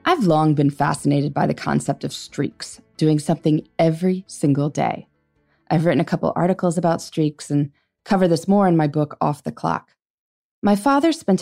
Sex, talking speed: female, 180 wpm